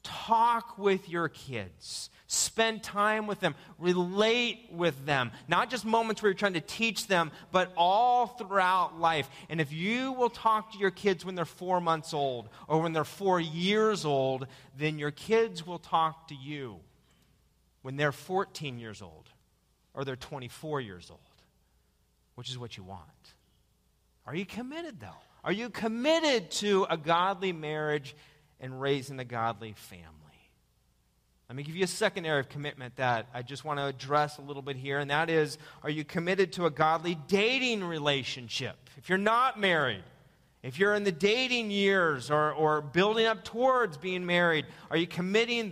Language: English